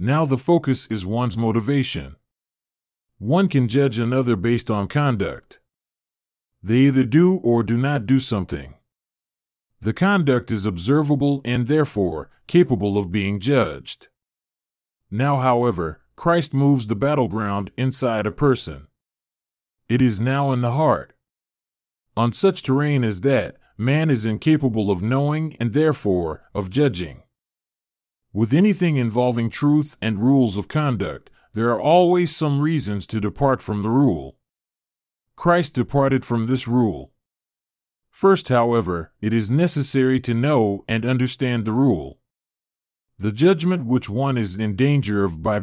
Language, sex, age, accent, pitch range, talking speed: English, male, 40-59, American, 105-140 Hz, 135 wpm